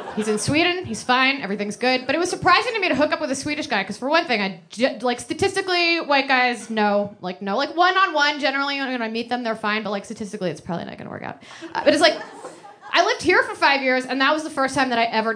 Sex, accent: female, American